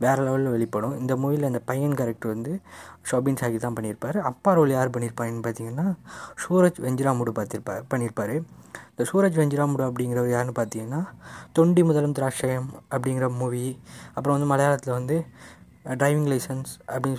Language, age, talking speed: Tamil, 20-39, 145 wpm